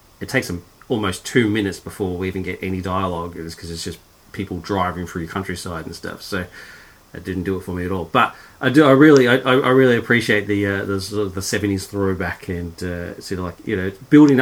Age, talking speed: 40-59, 235 wpm